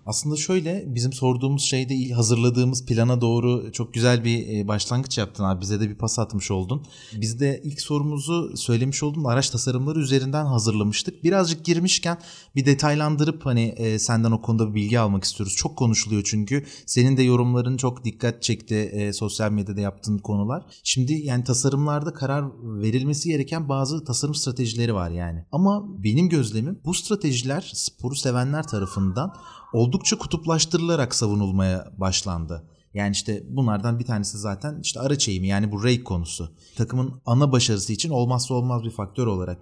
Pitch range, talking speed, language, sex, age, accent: 105-145 Hz, 150 wpm, Turkish, male, 30-49, native